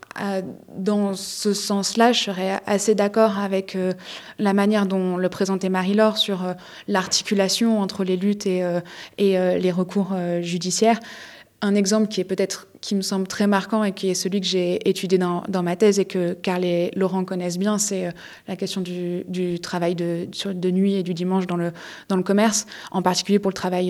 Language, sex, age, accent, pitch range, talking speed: French, female, 20-39, French, 185-210 Hz, 205 wpm